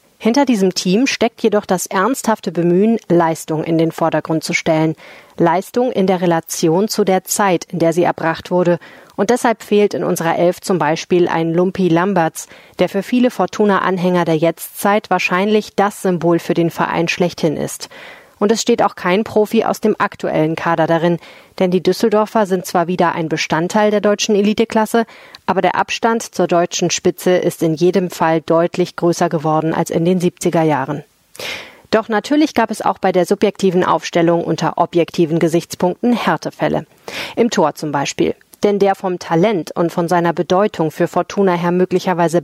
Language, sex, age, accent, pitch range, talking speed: German, female, 30-49, German, 170-200 Hz, 170 wpm